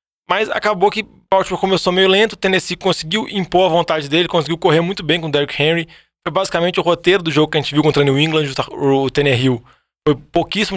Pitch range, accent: 135-170 Hz, Brazilian